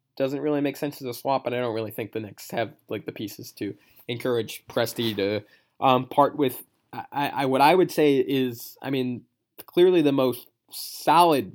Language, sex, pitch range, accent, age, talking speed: English, male, 120-150 Hz, American, 20-39, 195 wpm